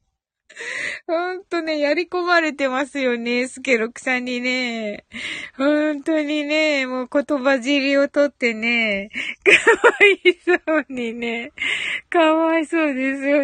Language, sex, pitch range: Japanese, female, 210-310 Hz